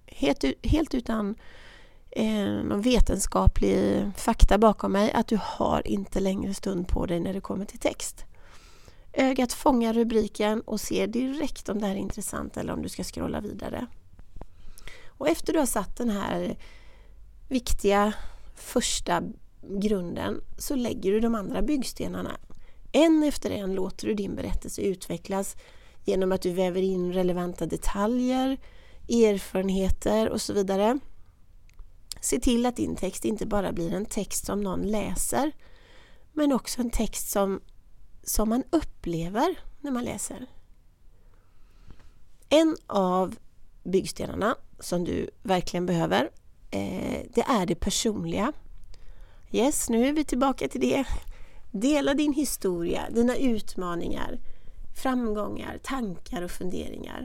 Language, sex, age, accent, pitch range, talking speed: Swedish, female, 30-49, native, 180-245 Hz, 130 wpm